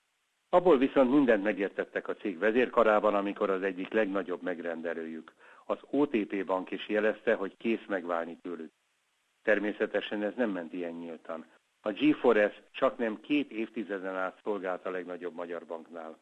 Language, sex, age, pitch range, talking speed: Hungarian, male, 60-79, 90-110 Hz, 140 wpm